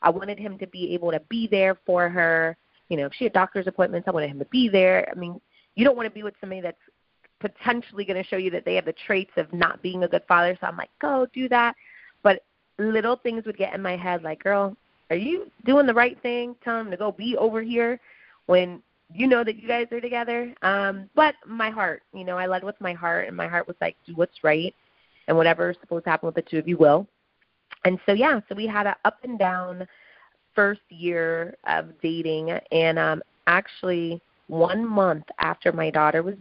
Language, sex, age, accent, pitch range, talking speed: English, female, 30-49, American, 165-220 Hz, 225 wpm